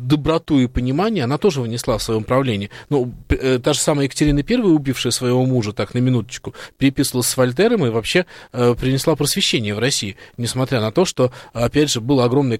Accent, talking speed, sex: native, 185 wpm, male